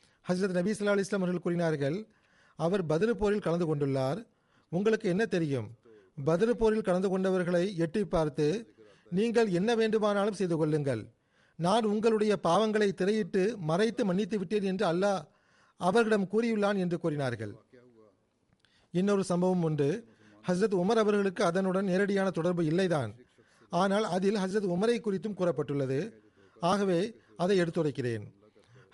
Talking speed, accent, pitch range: 115 wpm, native, 160-210 Hz